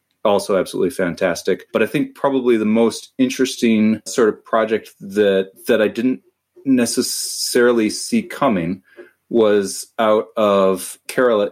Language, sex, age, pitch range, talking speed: English, male, 30-49, 85-110 Hz, 125 wpm